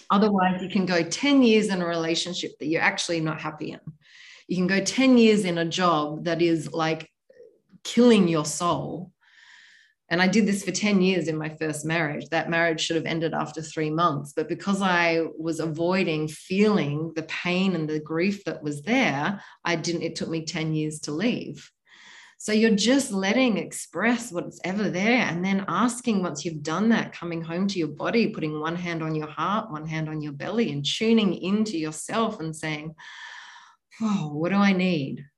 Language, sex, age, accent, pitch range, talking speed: English, female, 30-49, Australian, 160-195 Hz, 190 wpm